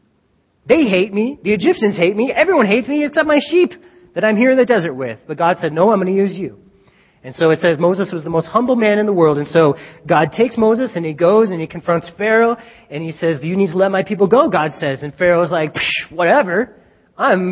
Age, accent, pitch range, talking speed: 30-49, American, 150-195 Hz, 250 wpm